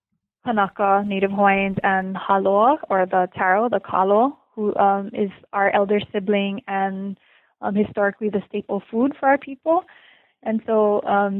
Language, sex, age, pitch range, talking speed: English, female, 20-39, 195-225 Hz, 145 wpm